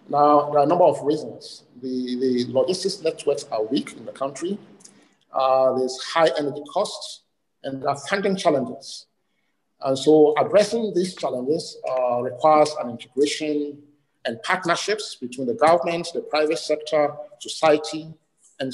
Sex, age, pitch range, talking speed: male, 50-69, 135-170 Hz, 145 wpm